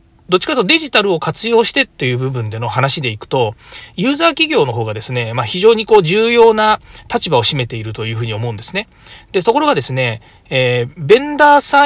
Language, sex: Japanese, male